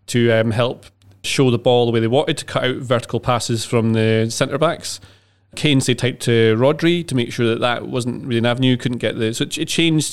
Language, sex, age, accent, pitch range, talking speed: English, male, 30-49, British, 110-135 Hz, 225 wpm